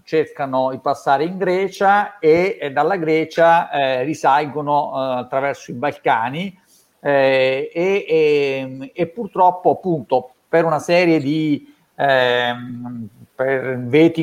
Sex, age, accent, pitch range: male, 50-69, native, 135-180 Hz